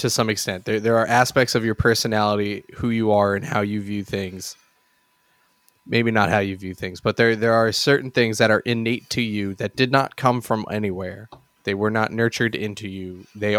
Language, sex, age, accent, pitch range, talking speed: English, male, 20-39, American, 105-120 Hz, 210 wpm